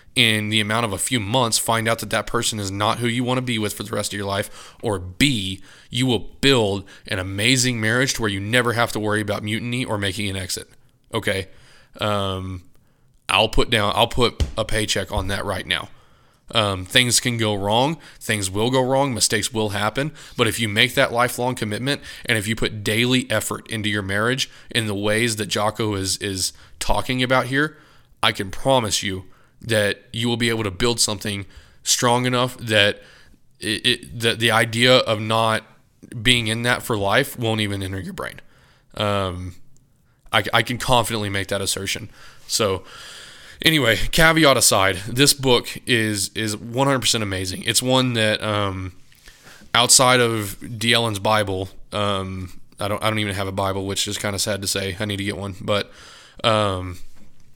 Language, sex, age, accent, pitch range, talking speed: English, male, 20-39, American, 100-120 Hz, 190 wpm